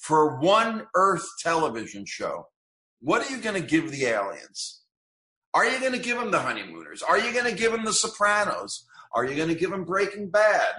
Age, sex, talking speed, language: 50-69, male, 205 wpm, English